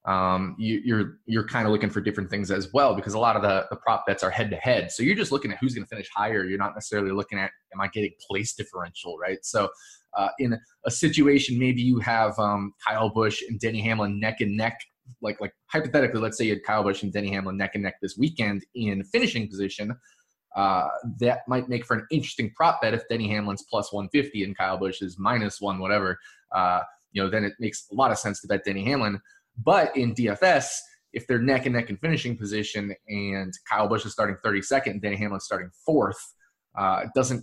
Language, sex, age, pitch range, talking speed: English, male, 20-39, 100-125 Hz, 220 wpm